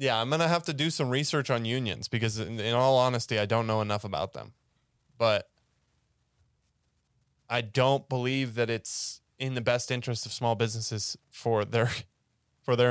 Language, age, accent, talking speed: English, 20-39, American, 180 wpm